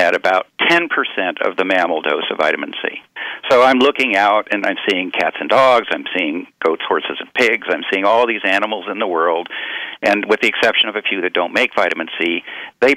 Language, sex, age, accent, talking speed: English, male, 50-69, American, 215 wpm